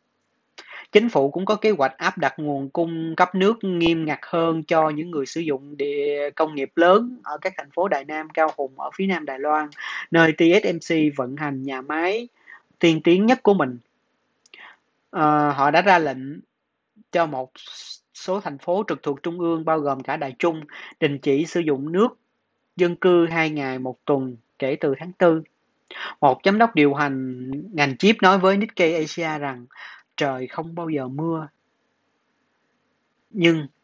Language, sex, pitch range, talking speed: Vietnamese, male, 145-180 Hz, 175 wpm